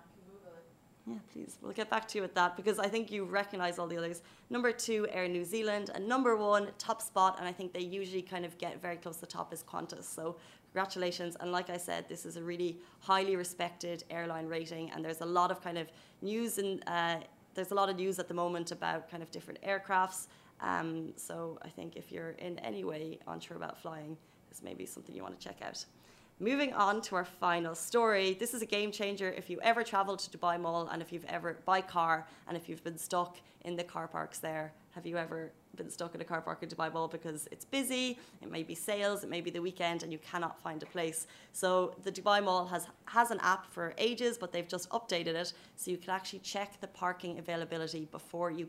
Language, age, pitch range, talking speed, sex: Arabic, 20-39, 170-195 Hz, 235 wpm, female